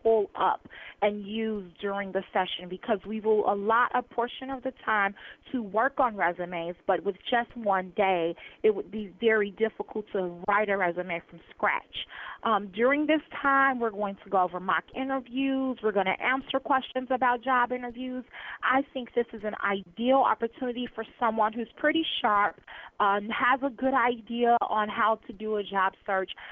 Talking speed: 175 wpm